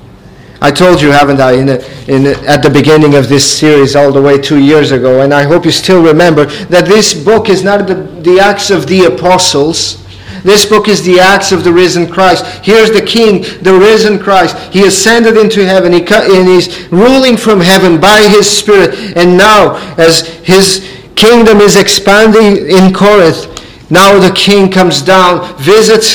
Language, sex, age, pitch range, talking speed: English, male, 50-69, 155-200 Hz, 190 wpm